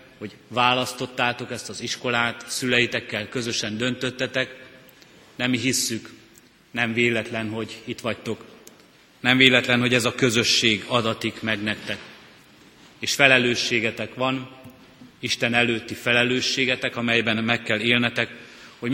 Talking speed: 115 wpm